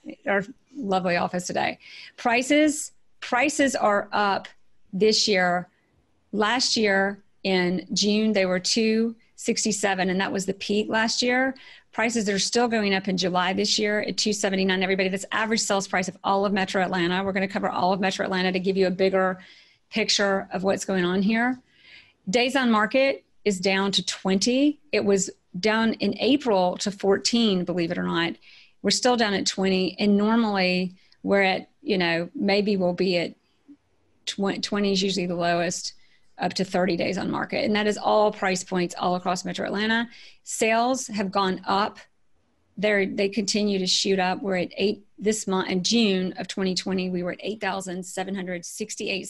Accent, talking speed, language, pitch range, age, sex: American, 175 wpm, English, 185-215 Hz, 40-59, female